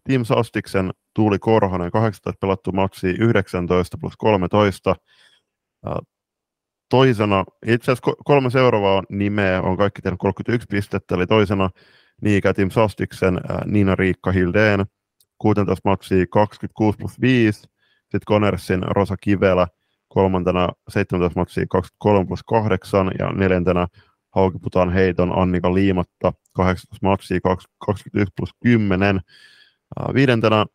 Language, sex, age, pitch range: Finnish, male, 30-49, 90-105 Hz